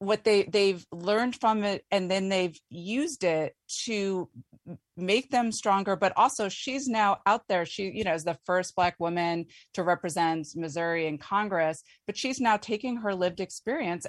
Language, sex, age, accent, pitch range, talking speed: English, female, 30-49, American, 170-205 Hz, 175 wpm